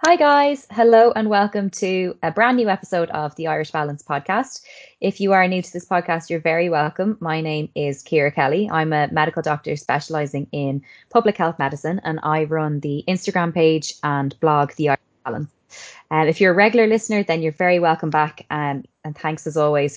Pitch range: 145-180 Hz